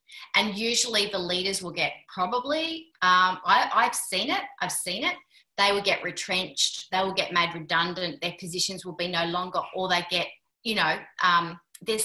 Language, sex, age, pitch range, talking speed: English, female, 30-49, 180-225 Hz, 185 wpm